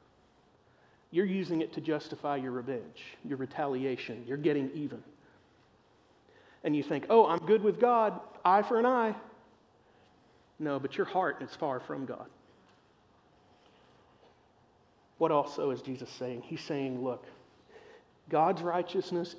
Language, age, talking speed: English, 40-59, 130 wpm